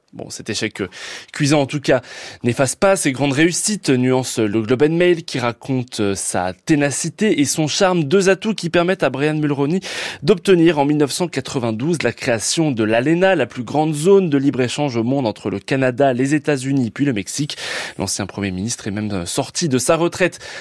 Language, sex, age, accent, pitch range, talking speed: French, male, 20-39, French, 115-165 Hz, 185 wpm